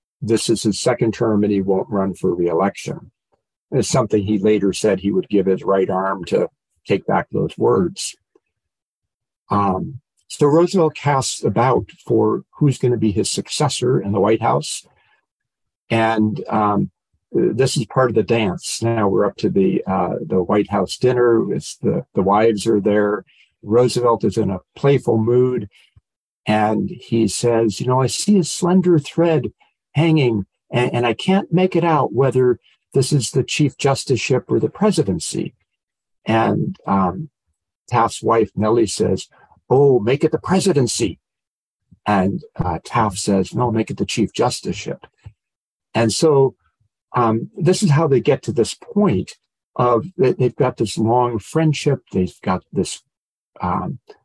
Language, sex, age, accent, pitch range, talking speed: English, male, 50-69, American, 105-140 Hz, 155 wpm